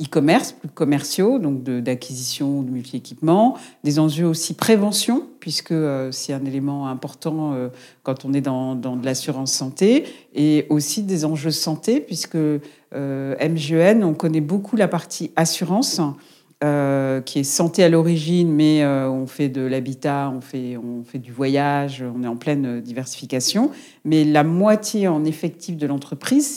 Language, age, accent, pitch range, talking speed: French, 50-69, French, 135-170 Hz, 165 wpm